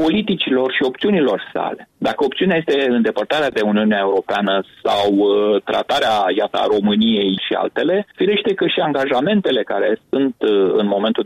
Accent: native